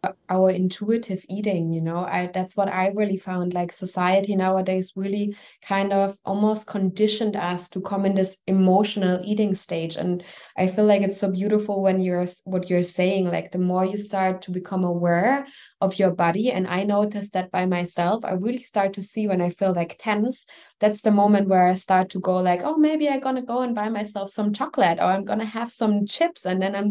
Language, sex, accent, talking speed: English, female, German, 210 wpm